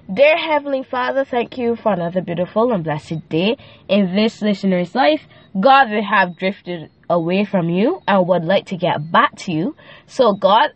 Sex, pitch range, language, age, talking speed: female, 190-295 Hz, English, 10-29, 180 wpm